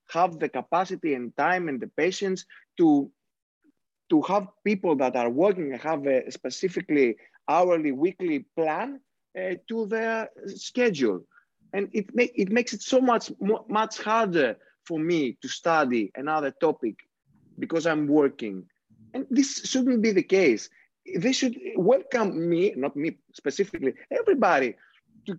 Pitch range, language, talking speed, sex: 145-225 Hz, Greek, 140 wpm, male